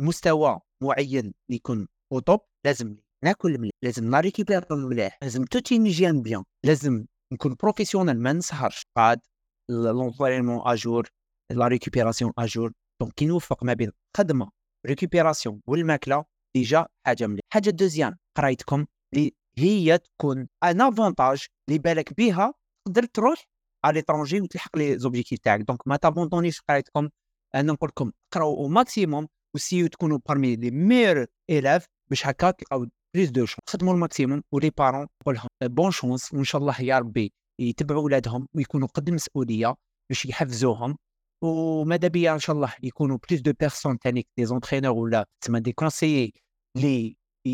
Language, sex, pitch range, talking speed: Arabic, male, 125-165 Hz, 135 wpm